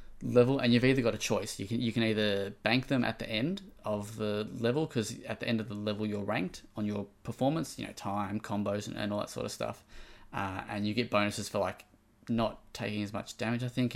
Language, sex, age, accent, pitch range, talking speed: English, male, 20-39, Australian, 100-115 Hz, 245 wpm